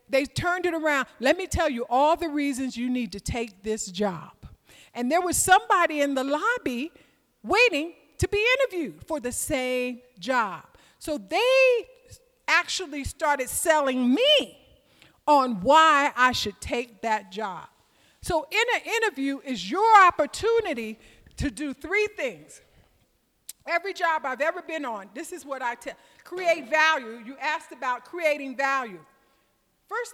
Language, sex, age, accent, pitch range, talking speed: English, female, 50-69, American, 250-340 Hz, 150 wpm